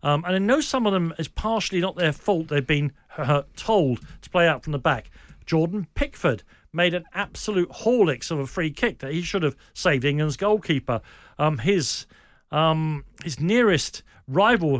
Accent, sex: British, male